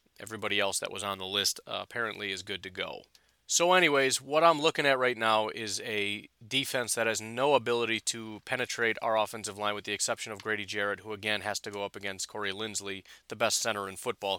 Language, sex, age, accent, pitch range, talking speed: English, male, 30-49, American, 105-130 Hz, 220 wpm